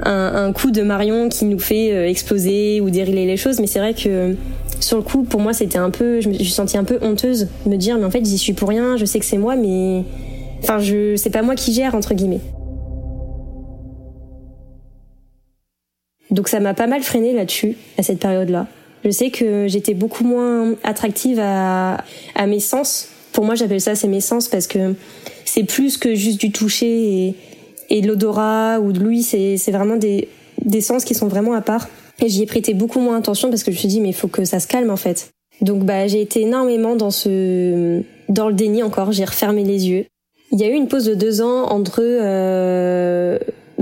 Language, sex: French, female